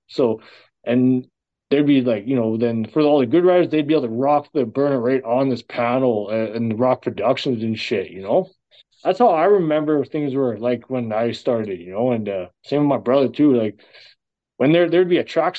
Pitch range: 125-160 Hz